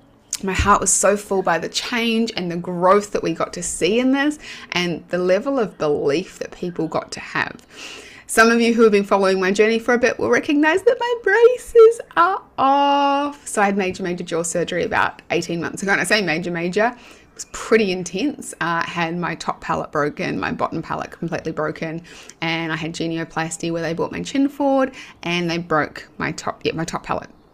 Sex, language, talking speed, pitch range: female, English, 210 wpm, 170-245 Hz